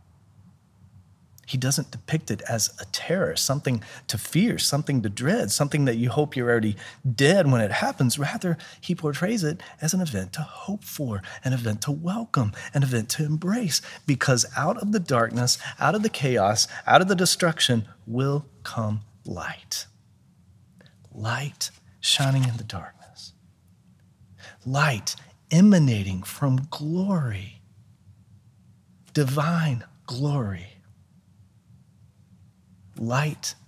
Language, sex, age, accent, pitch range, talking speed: English, male, 40-59, American, 105-140 Hz, 125 wpm